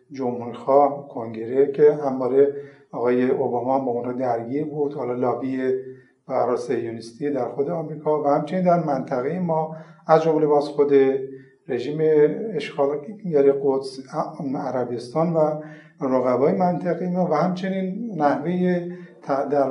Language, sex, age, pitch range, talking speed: Persian, male, 50-69, 130-160 Hz, 120 wpm